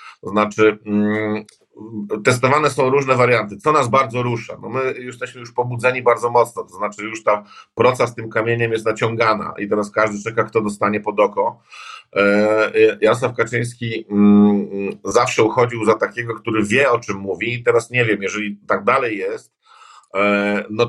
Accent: native